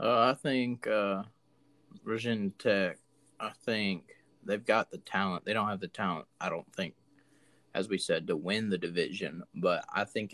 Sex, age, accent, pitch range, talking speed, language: male, 20-39, American, 100-115 Hz, 175 wpm, English